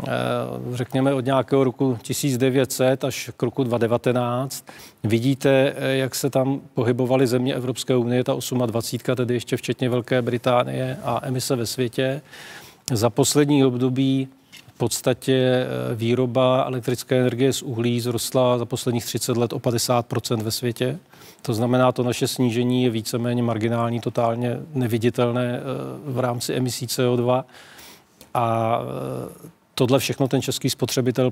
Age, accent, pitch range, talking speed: 40-59, native, 120-130 Hz, 130 wpm